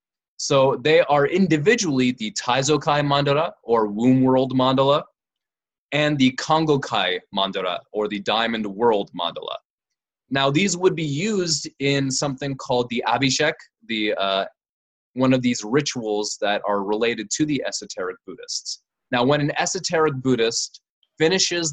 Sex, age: male, 20-39